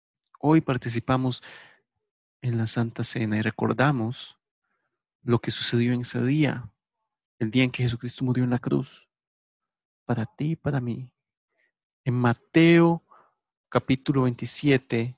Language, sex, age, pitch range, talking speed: English, male, 40-59, 120-145 Hz, 125 wpm